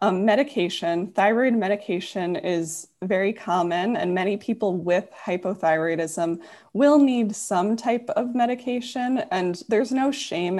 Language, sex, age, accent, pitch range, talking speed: English, female, 20-39, American, 175-230 Hz, 125 wpm